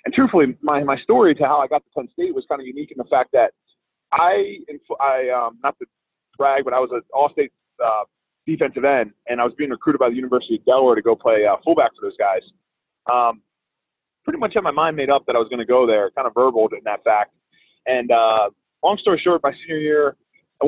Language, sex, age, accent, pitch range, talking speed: English, male, 30-49, American, 120-160 Hz, 240 wpm